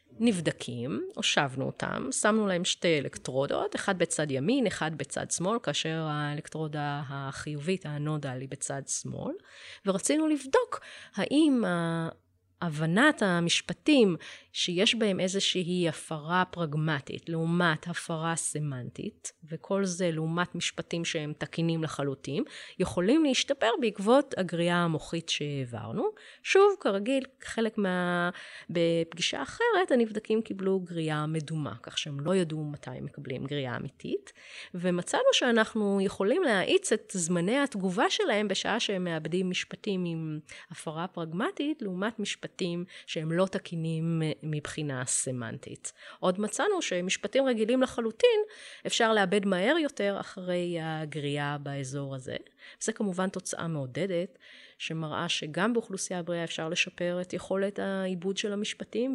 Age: 30-49